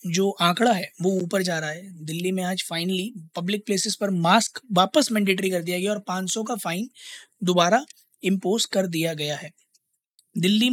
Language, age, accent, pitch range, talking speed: Hindi, 20-39, native, 165-205 Hz, 180 wpm